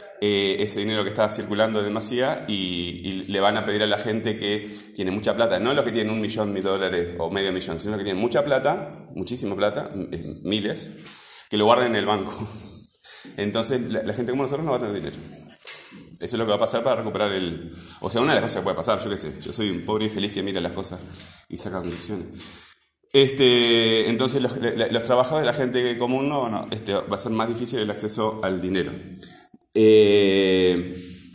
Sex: male